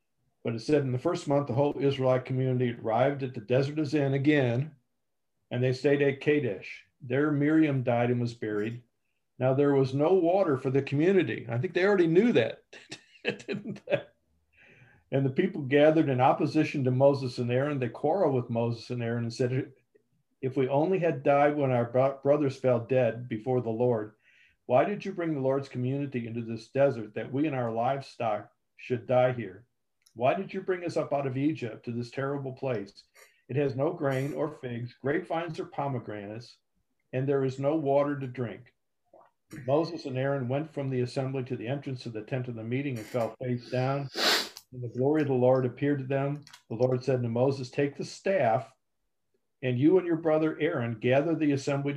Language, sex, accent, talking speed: English, male, American, 195 wpm